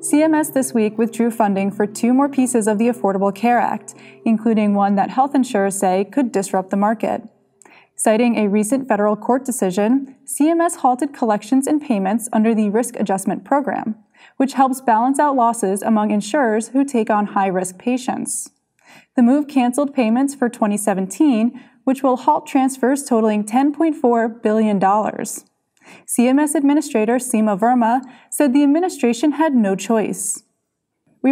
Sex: female